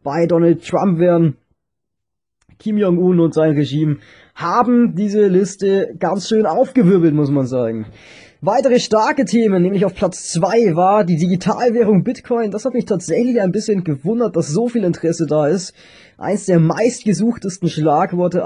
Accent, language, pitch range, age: German, German, 160-210 Hz, 20-39